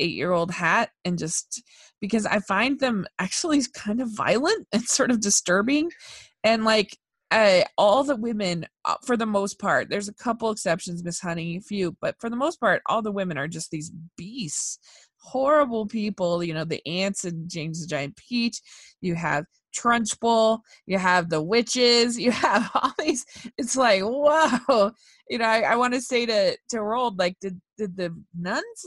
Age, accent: 20-39, American